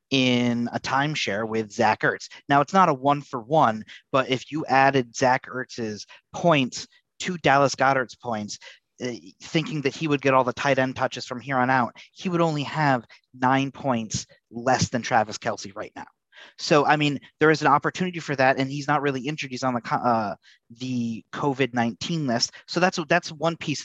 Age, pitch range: 30-49, 120-145 Hz